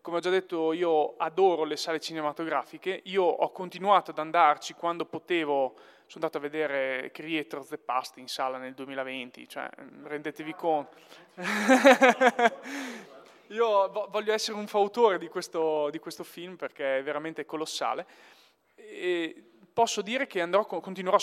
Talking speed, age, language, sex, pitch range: 145 wpm, 20-39, Italian, male, 160-210 Hz